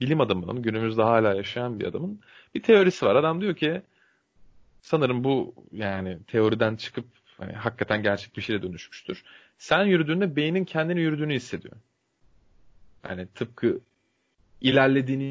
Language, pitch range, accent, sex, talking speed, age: Turkish, 110-145 Hz, native, male, 130 wpm, 30-49